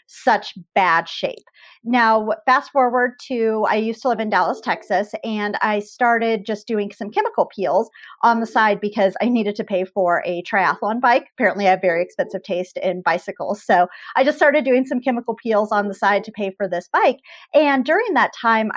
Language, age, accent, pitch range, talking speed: English, 30-49, American, 195-240 Hz, 200 wpm